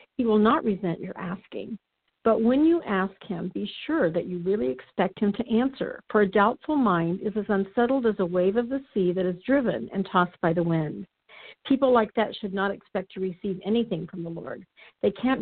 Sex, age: female, 50-69